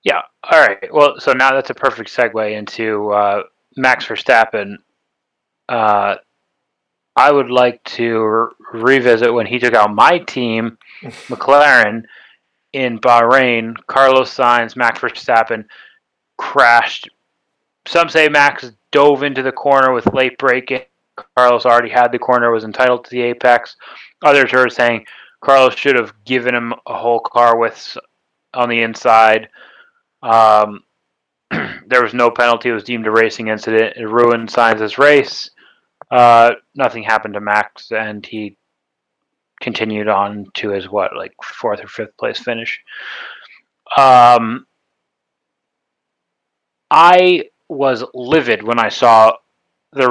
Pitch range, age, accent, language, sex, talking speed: 110-130 Hz, 30-49, American, English, male, 130 wpm